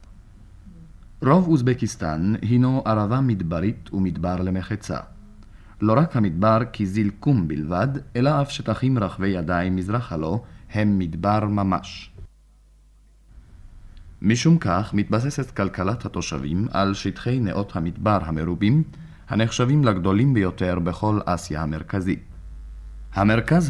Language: Hebrew